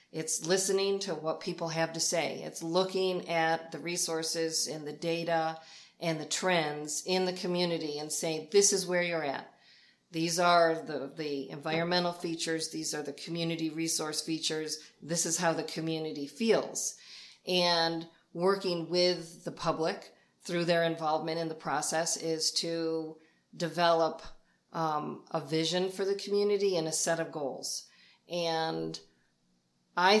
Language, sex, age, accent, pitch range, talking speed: English, female, 40-59, American, 160-190 Hz, 145 wpm